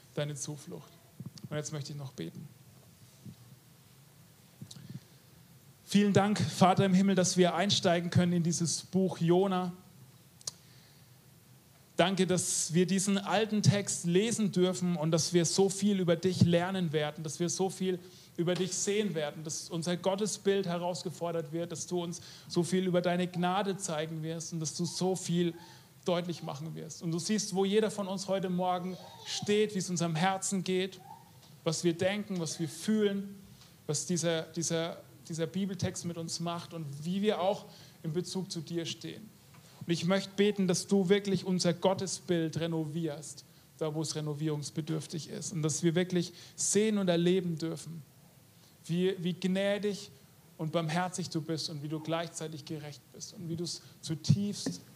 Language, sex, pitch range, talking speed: German, male, 155-185 Hz, 160 wpm